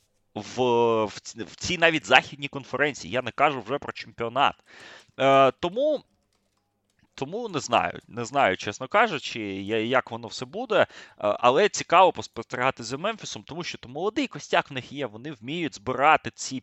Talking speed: 150 wpm